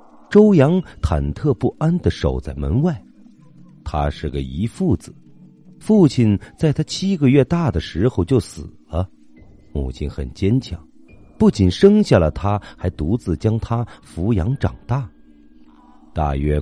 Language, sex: Chinese, male